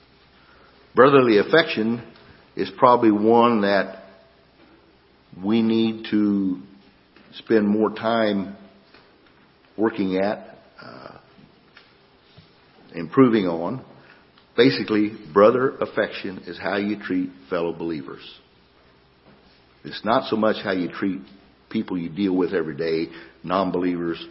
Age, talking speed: 50-69, 100 wpm